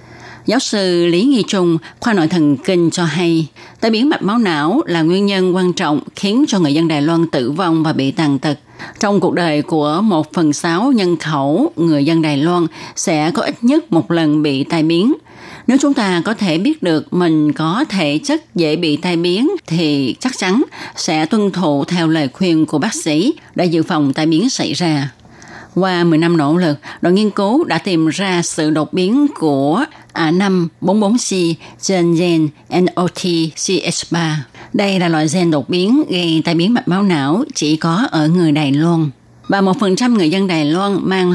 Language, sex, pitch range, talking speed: Vietnamese, female, 155-190 Hz, 205 wpm